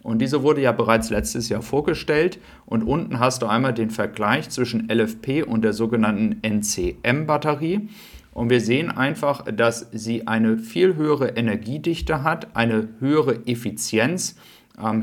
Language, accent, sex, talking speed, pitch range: German, German, male, 145 wpm, 110-135 Hz